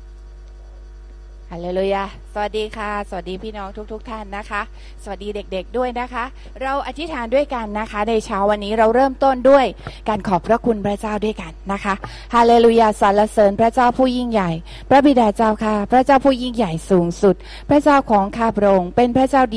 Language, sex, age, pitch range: Thai, female, 20-39, 195-230 Hz